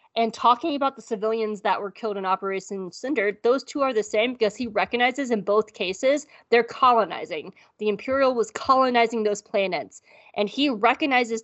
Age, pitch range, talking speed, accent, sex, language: 20-39, 200-240 Hz, 175 wpm, American, female, English